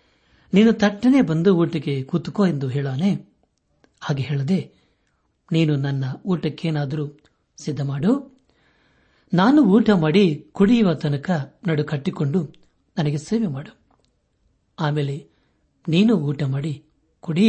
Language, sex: Kannada, male